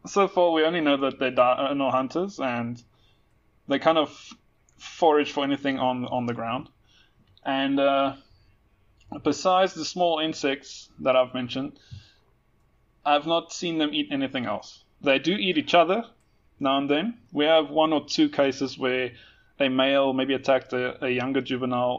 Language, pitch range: English, 120-150 Hz